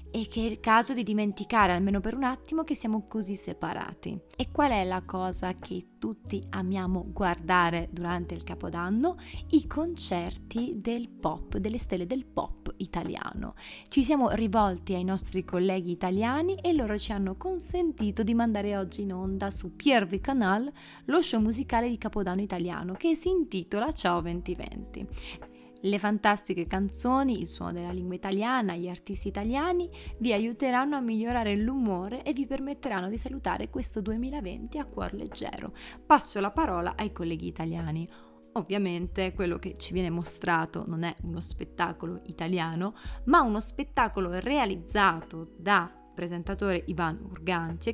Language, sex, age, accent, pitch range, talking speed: Italian, female, 20-39, native, 175-235 Hz, 150 wpm